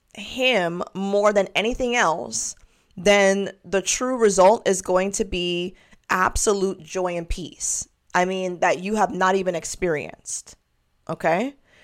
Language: English